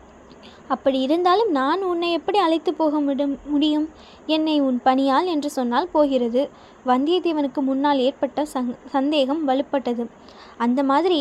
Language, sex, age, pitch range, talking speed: Tamil, female, 20-39, 265-325 Hz, 120 wpm